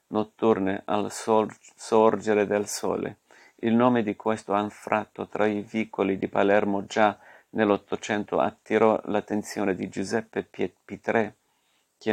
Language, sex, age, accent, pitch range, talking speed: Italian, male, 50-69, native, 100-110 Hz, 125 wpm